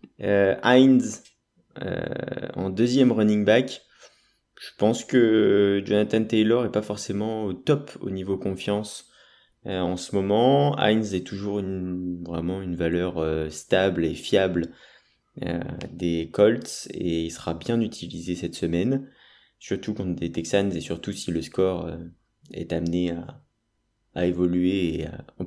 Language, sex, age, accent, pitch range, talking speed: French, male, 20-39, French, 90-110 Hz, 145 wpm